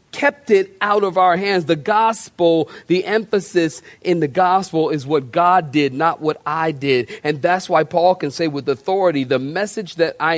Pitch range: 165-220 Hz